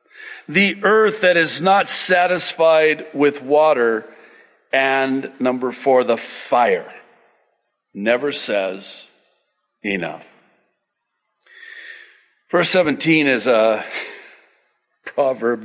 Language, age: English, 60-79